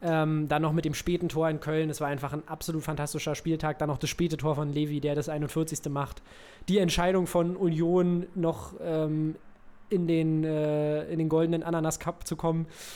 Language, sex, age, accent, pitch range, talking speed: German, male, 20-39, German, 155-190 Hz, 190 wpm